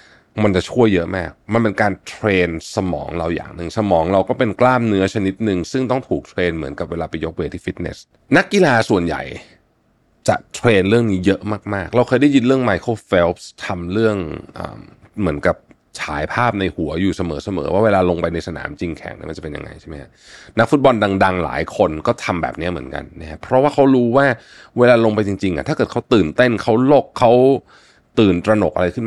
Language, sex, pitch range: Thai, male, 85-115 Hz